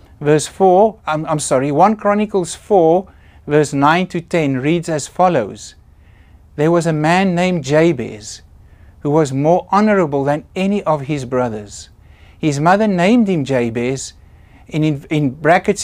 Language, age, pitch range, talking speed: English, 60-79, 110-180 Hz, 150 wpm